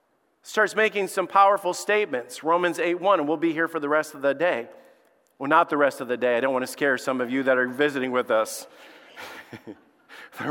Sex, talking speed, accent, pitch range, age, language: male, 225 wpm, American, 150-215 Hz, 40-59, English